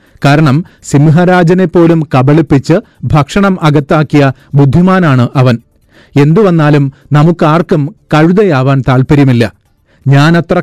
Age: 40-59